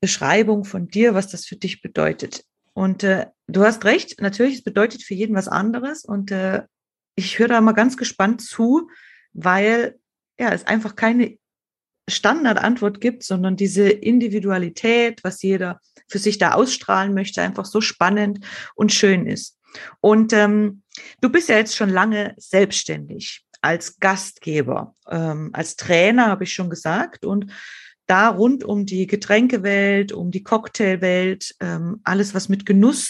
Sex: female